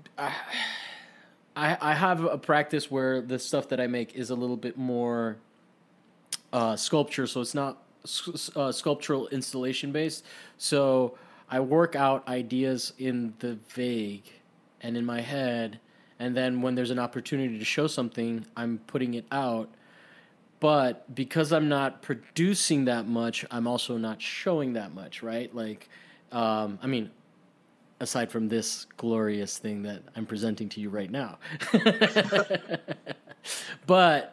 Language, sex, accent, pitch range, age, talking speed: English, male, American, 120-150 Hz, 20-39, 140 wpm